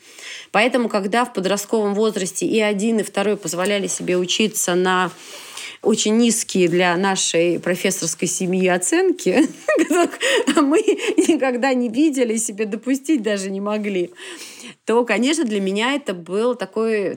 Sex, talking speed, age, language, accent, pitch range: female, 125 wpm, 30-49, Russian, native, 185-245 Hz